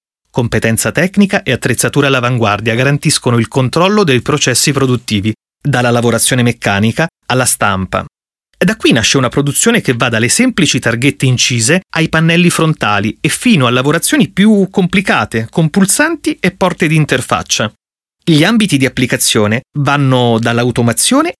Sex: male